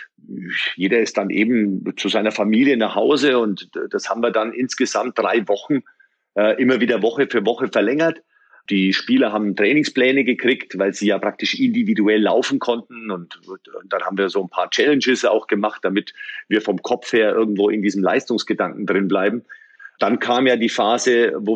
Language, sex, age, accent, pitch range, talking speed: German, male, 40-59, German, 105-130 Hz, 180 wpm